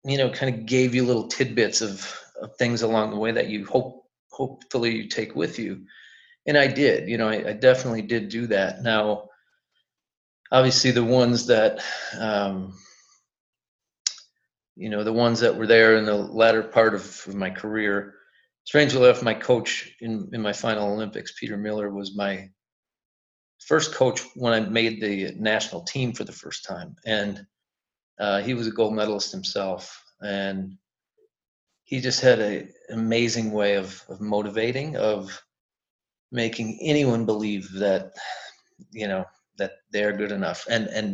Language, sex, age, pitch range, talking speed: English, male, 40-59, 105-120 Hz, 160 wpm